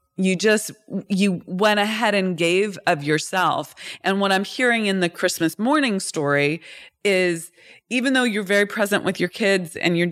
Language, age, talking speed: English, 30-49, 170 wpm